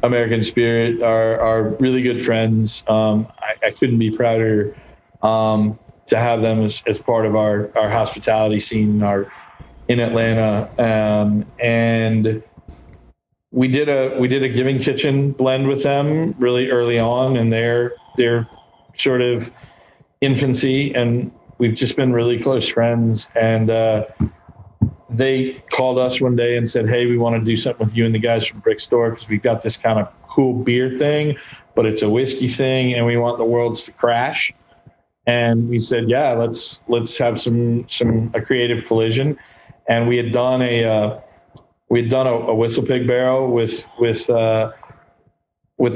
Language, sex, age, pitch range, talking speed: English, male, 40-59, 110-125 Hz, 170 wpm